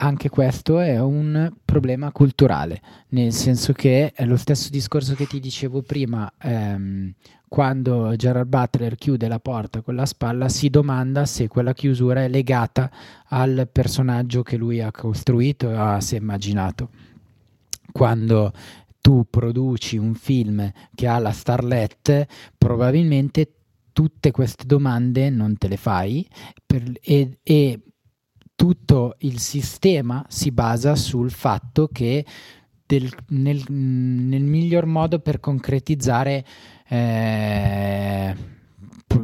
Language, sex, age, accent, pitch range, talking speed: Italian, male, 20-39, native, 120-145 Hz, 120 wpm